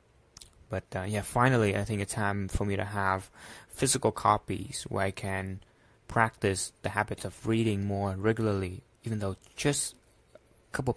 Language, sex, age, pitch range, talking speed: English, male, 20-39, 100-115 Hz, 160 wpm